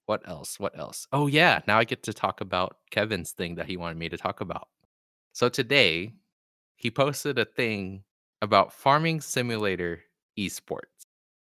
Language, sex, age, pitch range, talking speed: English, male, 20-39, 90-125 Hz, 160 wpm